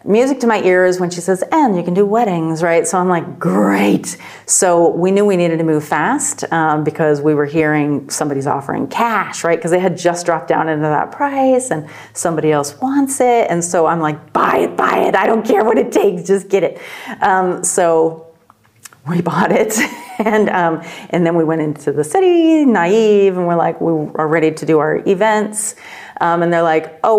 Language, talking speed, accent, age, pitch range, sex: English, 210 wpm, American, 40-59, 155-190 Hz, female